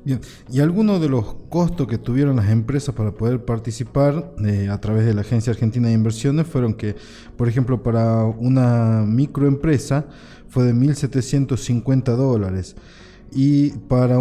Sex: male